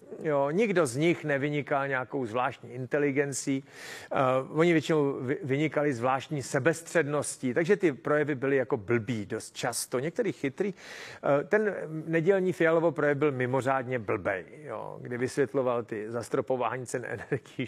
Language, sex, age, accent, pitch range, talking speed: Czech, male, 40-59, native, 130-170 Hz, 130 wpm